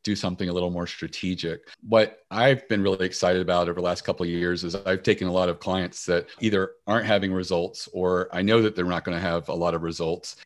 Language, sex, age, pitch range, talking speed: English, male, 40-59, 90-100 Hz, 245 wpm